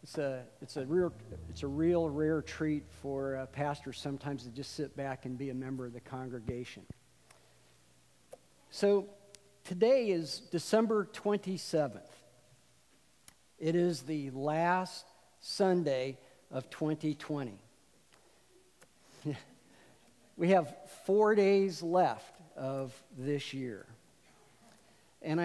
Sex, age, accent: male, 50-69, American